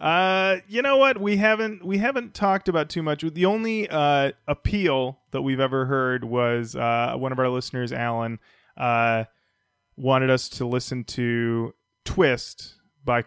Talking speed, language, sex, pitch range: 160 wpm, English, male, 115-160 Hz